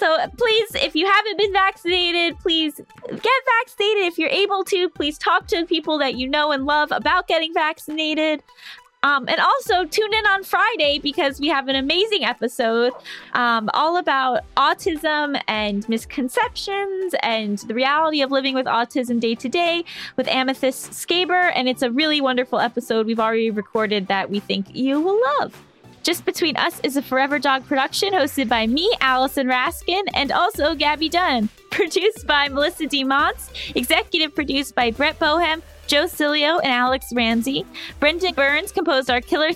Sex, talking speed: female, 165 wpm